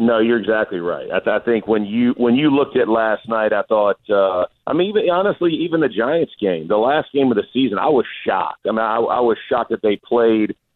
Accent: American